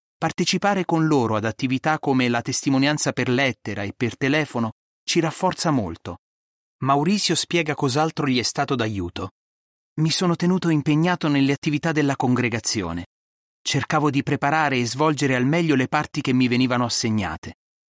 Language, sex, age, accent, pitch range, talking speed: Italian, male, 30-49, native, 115-155 Hz, 150 wpm